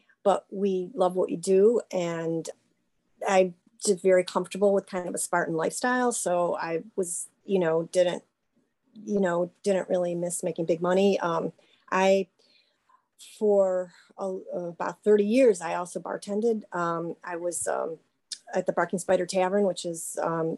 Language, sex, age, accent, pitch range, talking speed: English, female, 30-49, American, 175-210 Hz, 150 wpm